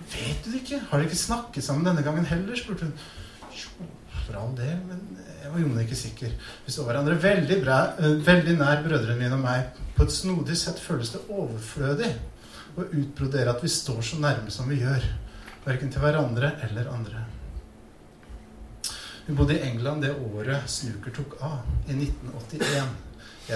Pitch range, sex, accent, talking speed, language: 115-150 Hz, male, Norwegian, 155 wpm, English